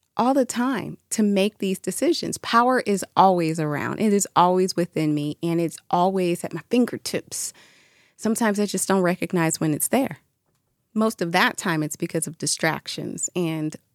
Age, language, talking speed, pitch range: 30-49, English, 170 wpm, 160-220 Hz